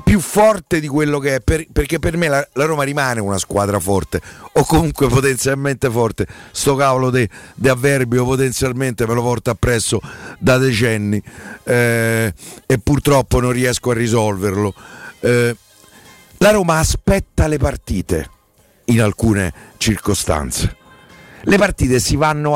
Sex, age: male, 50-69